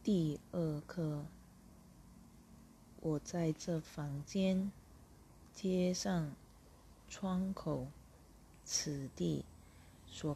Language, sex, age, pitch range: Chinese, female, 30-49, 130-160 Hz